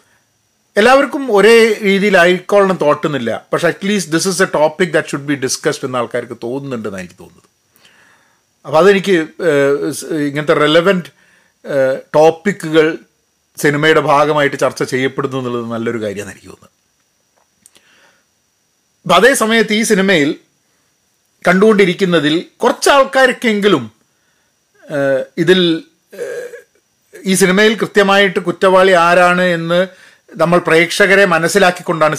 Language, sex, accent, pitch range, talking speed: Malayalam, male, native, 135-185 Hz, 95 wpm